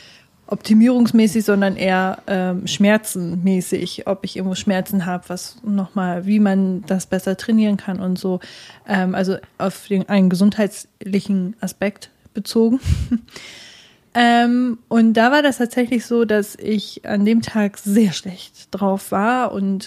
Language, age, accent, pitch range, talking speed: German, 20-39, German, 195-225 Hz, 135 wpm